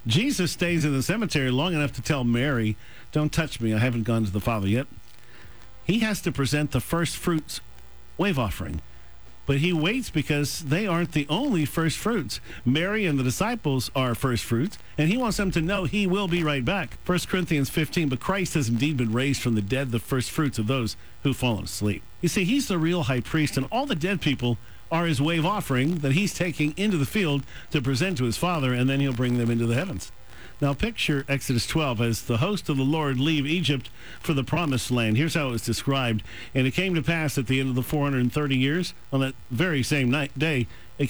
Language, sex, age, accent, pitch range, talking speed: English, male, 50-69, American, 120-160 Hz, 220 wpm